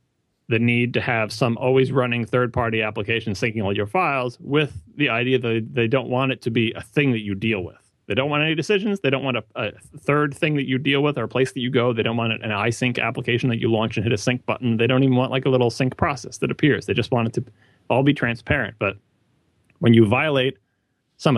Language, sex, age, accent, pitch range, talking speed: English, male, 30-49, American, 105-130 Hz, 250 wpm